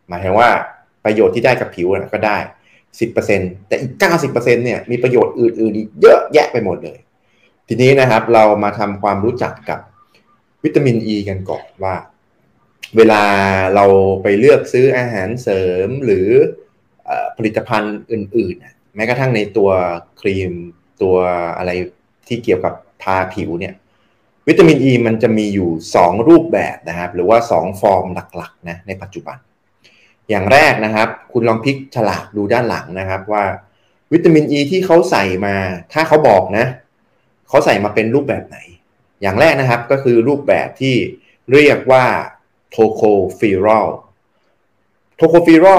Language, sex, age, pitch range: Thai, male, 20-39, 100-130 Hz